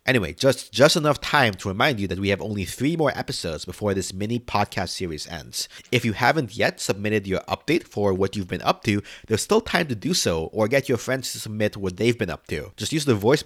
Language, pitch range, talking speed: English, 95-125 Hz, 240 wpm